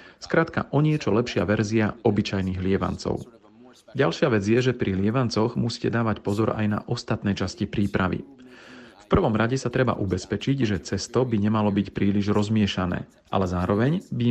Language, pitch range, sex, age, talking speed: Slovak, 100-120 Hz, male, 40-59, 155 wpm